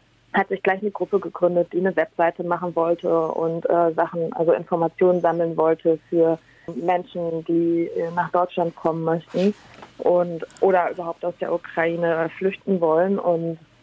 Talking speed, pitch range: 150 wpm, 165-185 Hz